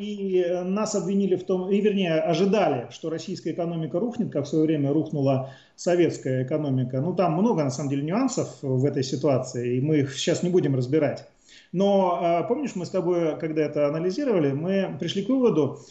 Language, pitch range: Russian, 145-190 Hz